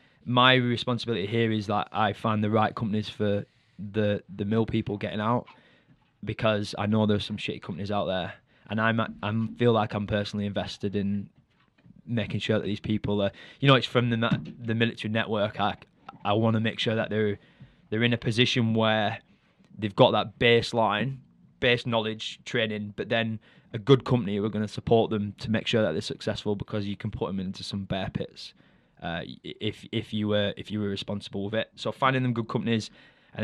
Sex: male